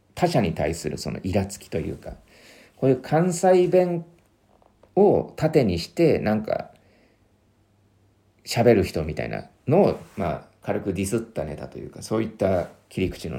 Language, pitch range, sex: Japanese, 85-130 Hz, male